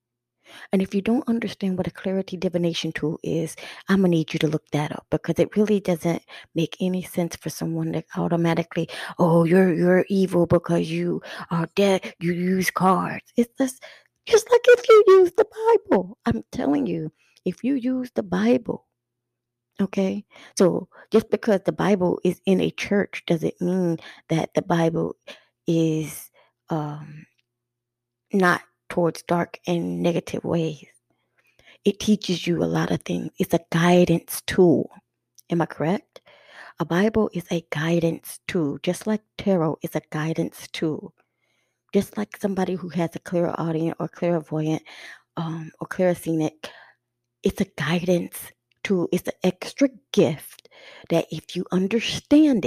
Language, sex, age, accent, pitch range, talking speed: English, female, 20-39, American, 160-200 Hz, 155 wpm